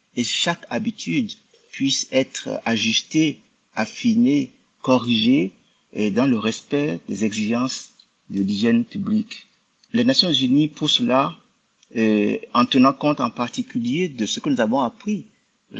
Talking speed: 135 wpm